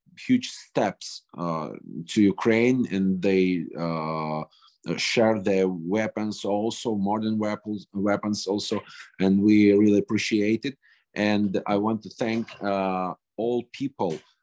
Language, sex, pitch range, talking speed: English, male, 90-110 Hz, 120 wpm